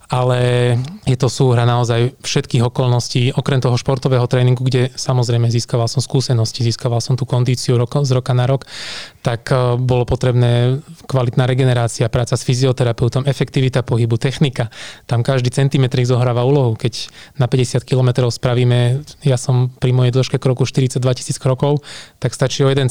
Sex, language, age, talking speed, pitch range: male, Slovak, 20-39, 155 wpm, 125-135 Hz